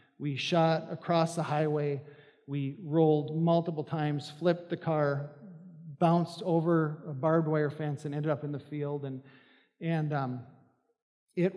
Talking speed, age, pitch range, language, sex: 145 wpm, 50-69, 145-180 Hz, English, male